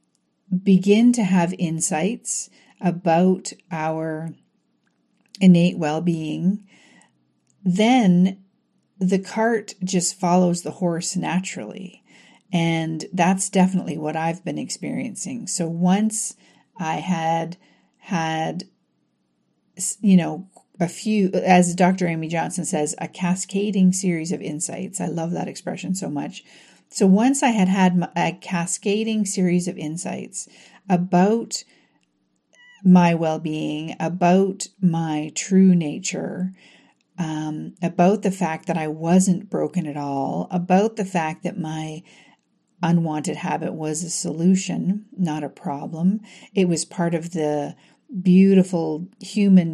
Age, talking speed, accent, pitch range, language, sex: 50-69, 115 wpm, American, 160-195 Hz, English, female